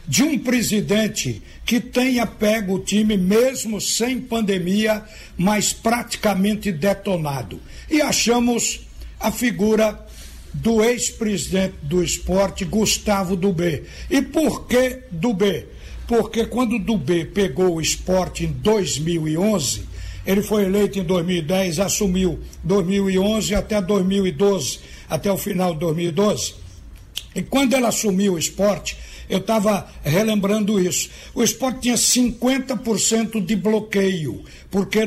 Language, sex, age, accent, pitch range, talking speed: Portuguese, male, 60-79, Brazilian, 185-225 Hz, 115 wpm